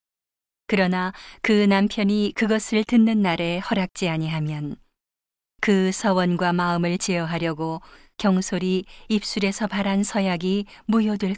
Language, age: Korean, 40-59